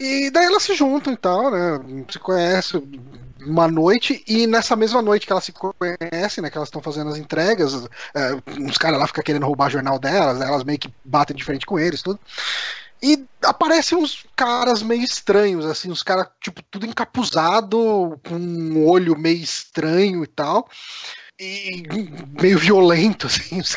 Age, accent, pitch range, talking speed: 20-39, Brazilian, 165-225 Hz, 180 wpm